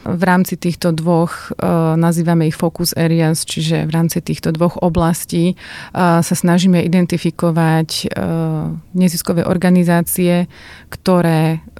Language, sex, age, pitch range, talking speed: Slovak, female, 30-49, 165-185 Hz, 100 wpm